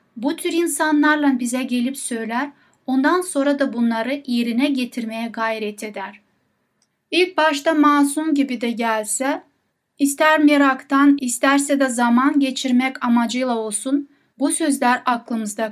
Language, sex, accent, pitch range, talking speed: Turkish, female, native, 240-295 Hz, 120 wpm